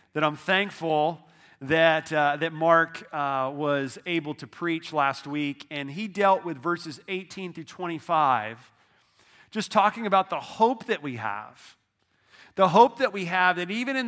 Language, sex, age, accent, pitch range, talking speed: English, male, 40-59, American, 165-205 Hz, 160 wpm